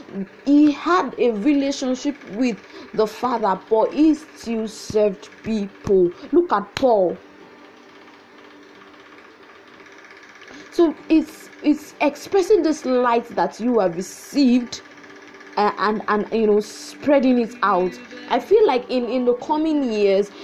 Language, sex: English, female